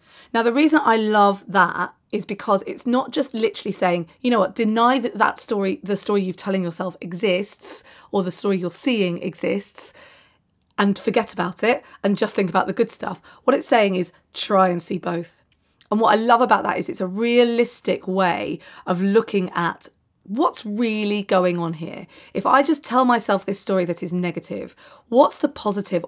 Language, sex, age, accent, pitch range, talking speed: English, female, 30-49, British, 185-235 Hz, 190 wpm